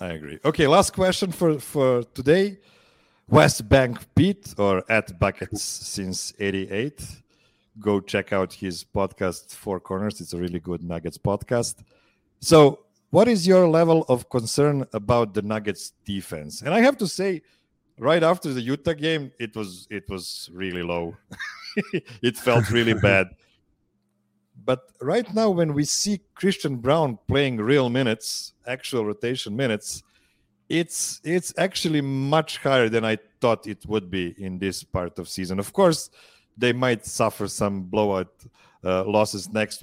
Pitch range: 100-140 Hz